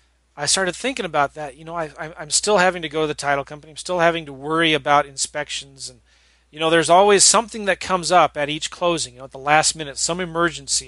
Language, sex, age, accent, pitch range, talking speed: English, male, 30-49, American, 130-175 Hz, 245 wpm